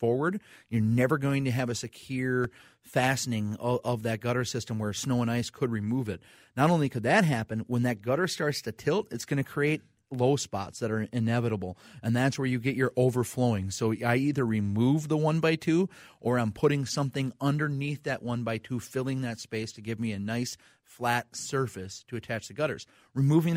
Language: English